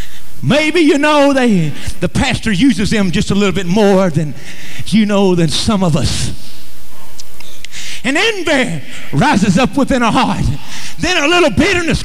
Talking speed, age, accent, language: 155 wpm, 50-69, American, English